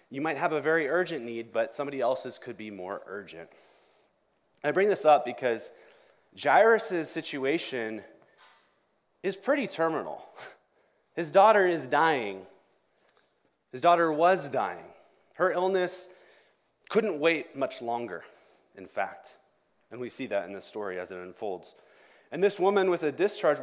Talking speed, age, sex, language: 140 wpm, 30-49, male, English